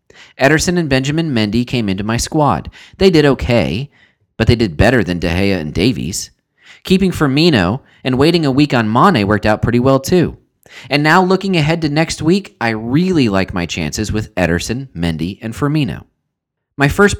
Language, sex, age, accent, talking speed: English, male, 30-49, American, 180 wpm